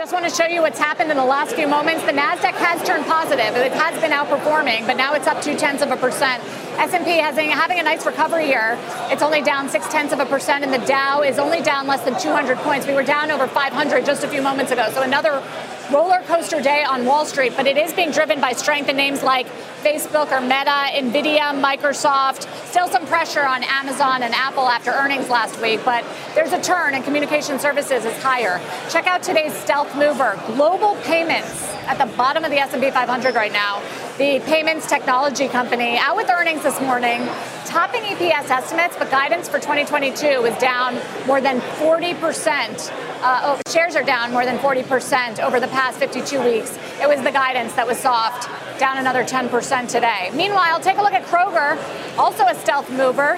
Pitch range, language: 265-310 Hz, English